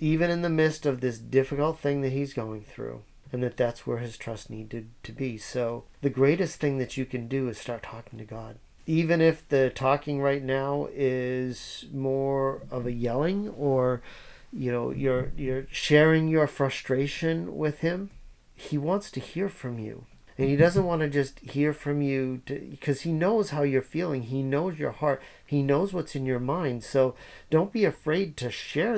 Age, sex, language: 40-59, male, English